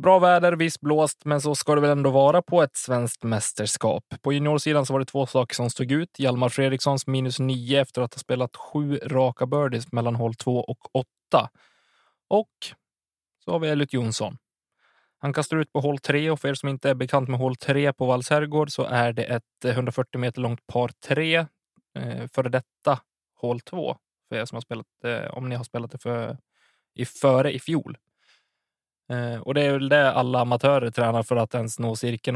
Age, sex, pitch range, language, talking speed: 20-39, male, 115-140 Hz, Swedish, 200 wpm